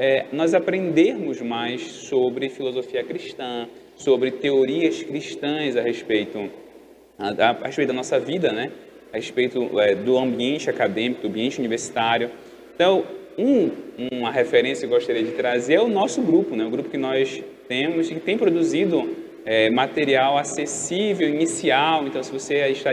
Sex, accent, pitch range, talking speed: male, Brazilian, 125-175 Hz, 150 wpm